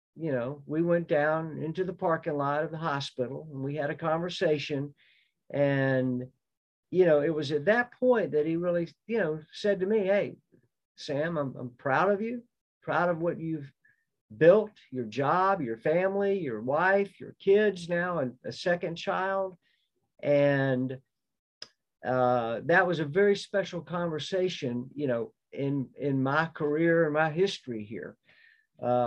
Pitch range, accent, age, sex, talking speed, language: 135-180 Hz, American, 50-69, male, 160 wpm, English